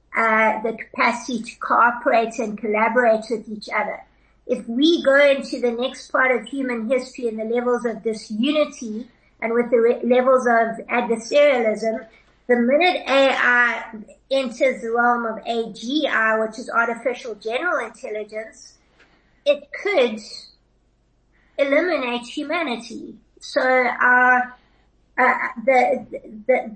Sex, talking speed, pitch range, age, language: female, 125 wpm, 225-265 Hz, 50-69, English